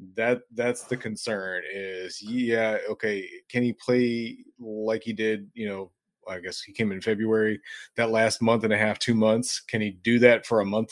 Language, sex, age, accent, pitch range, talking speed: English, male, 30-49, American, 100-115 Hz, 200 wpm